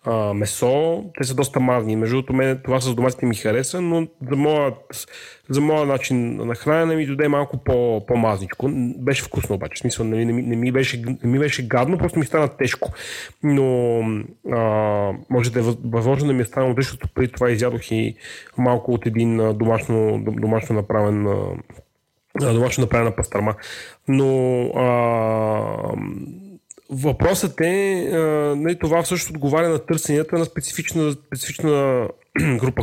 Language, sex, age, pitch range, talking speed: Bulgarian, male, 30-49, 120-160 Hz, 140 wpm